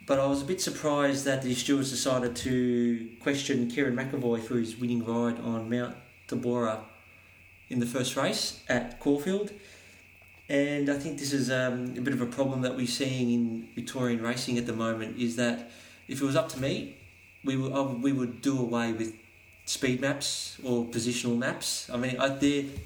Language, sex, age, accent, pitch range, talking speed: English, male, 30-49, Australian, 110-135 Hz, 190 wpm